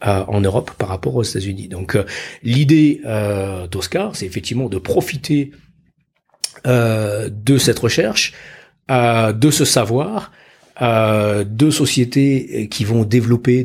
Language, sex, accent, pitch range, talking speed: French, male, French, 100-125 Hz, 130 wpm